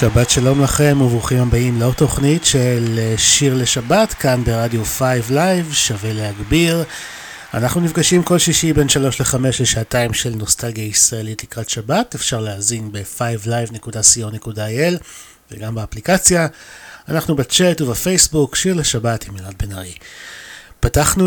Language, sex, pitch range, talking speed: Hebrew, male, 110-155 Hz, 125 wpm